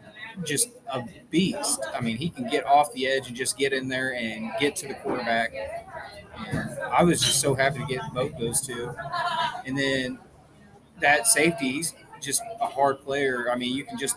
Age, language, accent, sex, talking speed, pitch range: 20-39, English, American, male, 190 wpm, 125-160 Hz